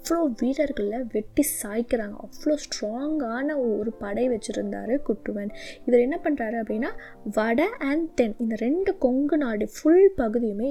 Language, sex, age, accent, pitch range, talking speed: Tamil, female, 20-39, native, 225-295 Hz, 130 wpm